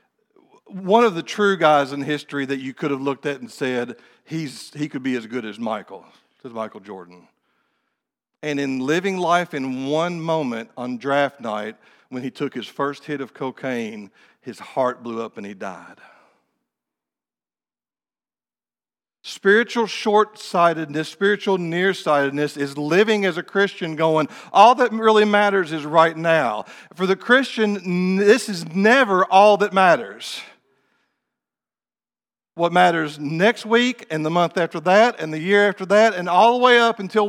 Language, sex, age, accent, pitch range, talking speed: English, male, 50-69, American, 145-205 Hz, 155 wpm